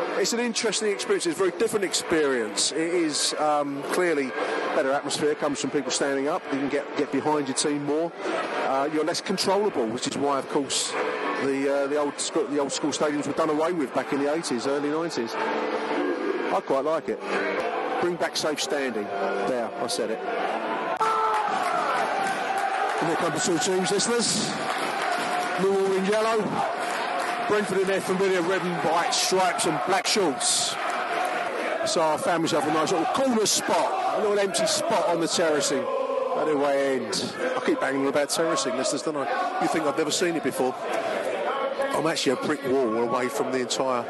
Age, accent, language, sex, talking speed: 30-49, British, English, male, 175 wpm